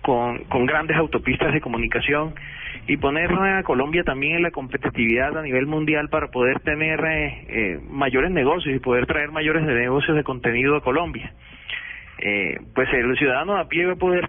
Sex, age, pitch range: male, 30-49, 130-160 Hz